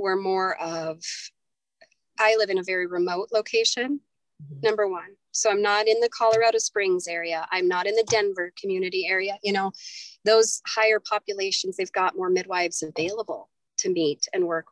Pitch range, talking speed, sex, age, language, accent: 190-255 Hz, 165 wpm, female, 30-49, English, American